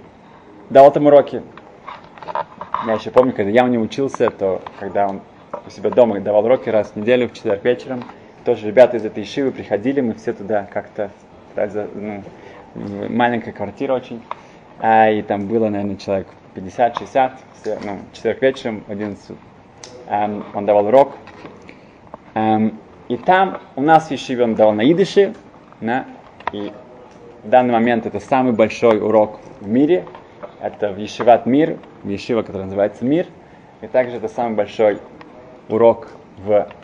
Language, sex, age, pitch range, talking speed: Russian, male, 20-39, 105-125 Hz, 135 wpm